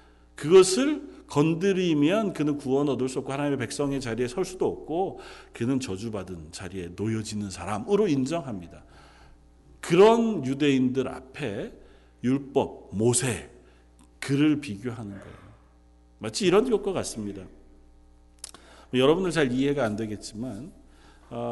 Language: Korean